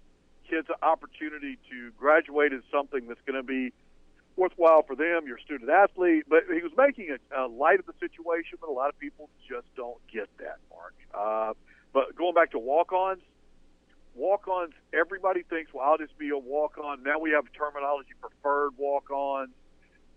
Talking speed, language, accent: 175 wpm, English, American